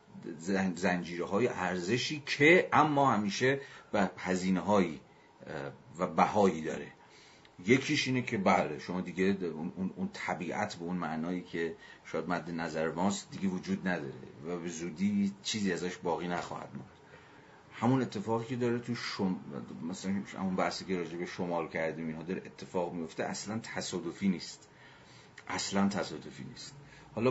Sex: male